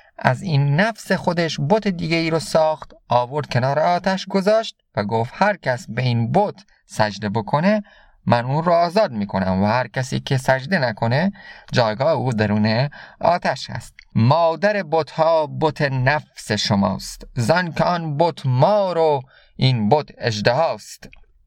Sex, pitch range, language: male, 120-175 Hz, Persian